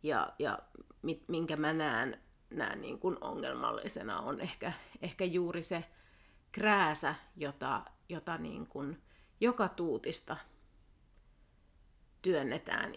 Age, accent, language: 30-49, native, Finnish